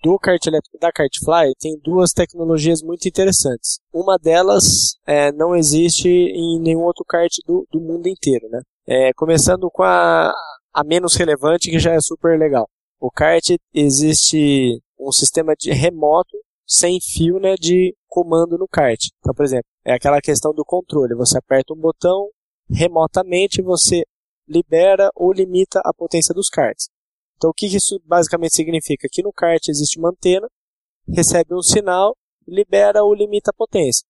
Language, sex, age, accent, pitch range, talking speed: Portuguese, male, 20-39, Brazilian, 140-180 Hz, 160 wpm